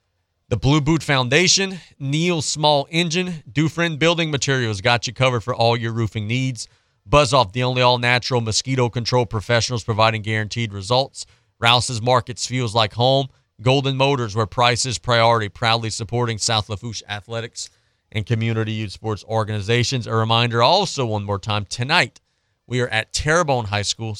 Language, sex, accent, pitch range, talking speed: English, male, American, 105-135 Hz, 160 wpm